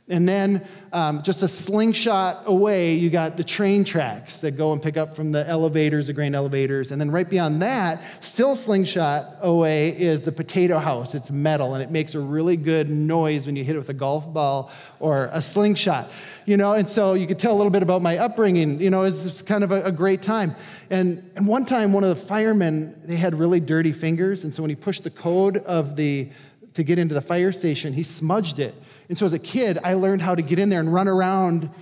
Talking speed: 230 wpm